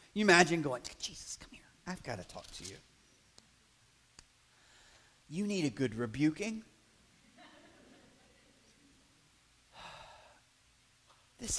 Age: 40-59